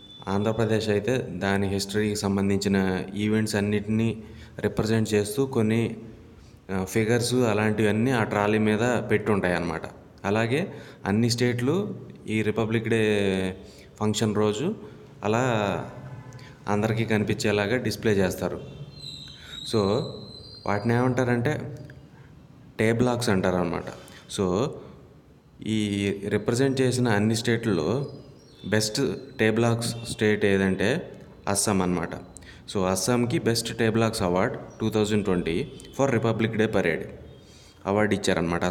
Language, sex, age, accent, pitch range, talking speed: English, male, 20-39, Indian, 100-120 Hz, 80 wpm